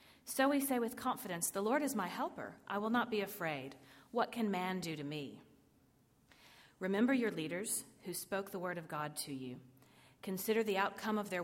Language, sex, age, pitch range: English, female, 40-59, 150-200 Hz